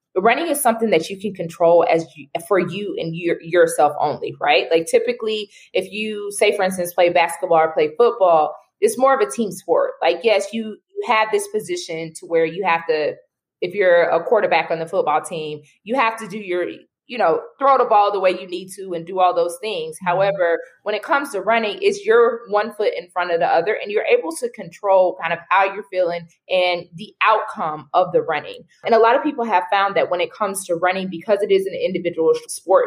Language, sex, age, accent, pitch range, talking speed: English, female, 20-39, American, 170-235 Hz, 225 wpm